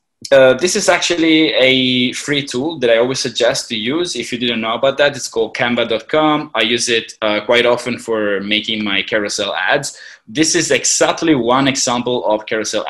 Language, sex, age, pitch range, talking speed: English, male, 20-39, 115-140 Hz, 185 wpm